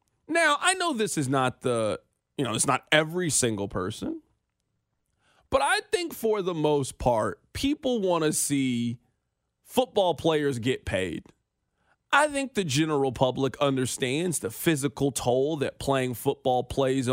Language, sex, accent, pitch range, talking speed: English, male, American, 135-200 Hz, 145 wpm